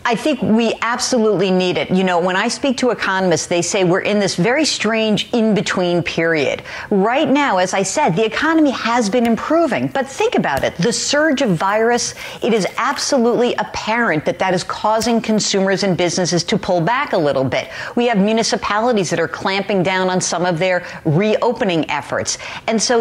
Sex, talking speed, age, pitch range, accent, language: female, 190 wpm, 50-69, 185-245 Hz, American, English